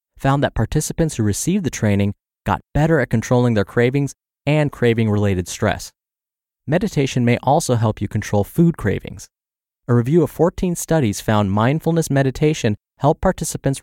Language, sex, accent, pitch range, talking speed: English, male, American, 105-140 Hz, 150 wpm